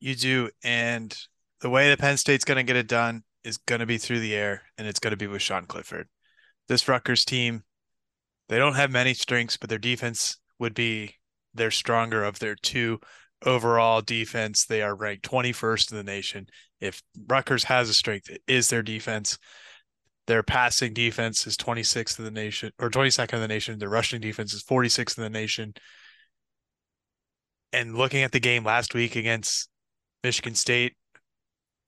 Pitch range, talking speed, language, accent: 110-125 Hz, 180 wpm, English, American